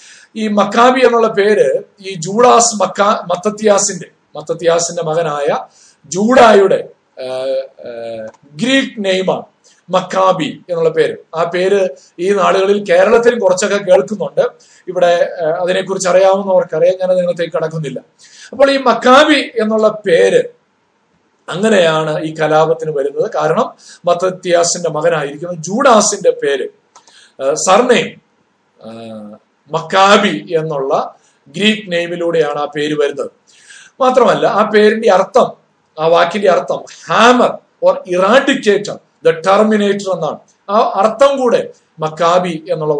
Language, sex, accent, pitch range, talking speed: Malayalam, male, native, 170-240 Hz, 95 wpm